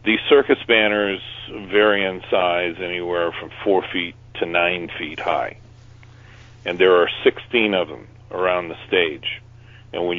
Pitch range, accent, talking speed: 95-115 Hz, American, 145 wpm